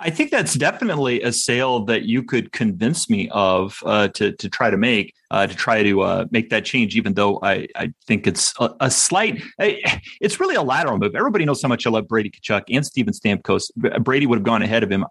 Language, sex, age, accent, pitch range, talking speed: English, male, 30-49, American, 115-175 Hz, 235 wpm